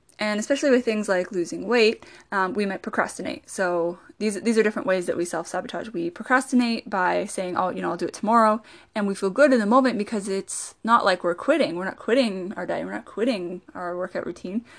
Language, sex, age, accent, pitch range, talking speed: English, female, 20-39, American, 185-235 Hz, 225 wpm